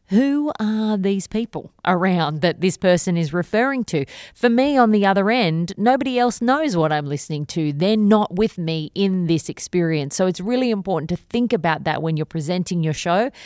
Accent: Australian